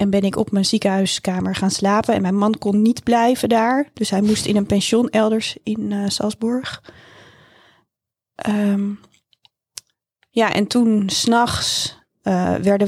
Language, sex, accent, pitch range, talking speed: Dutch, female, Dutch, 185-210 Hz, 150 wpm